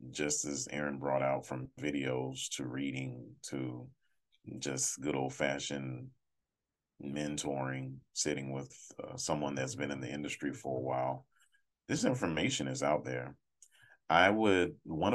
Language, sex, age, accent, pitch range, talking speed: English, male, 30-49, American, 65-80 Hz, 135 wpm